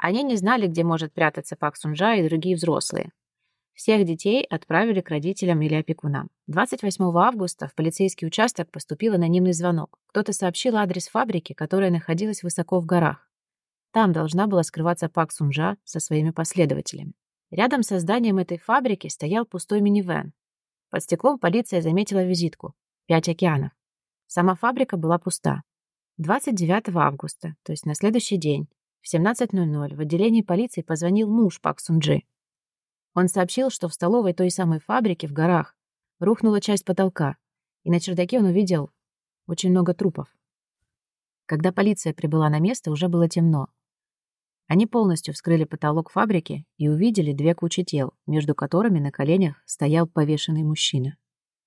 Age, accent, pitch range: 30-49, native, 160-195 Hz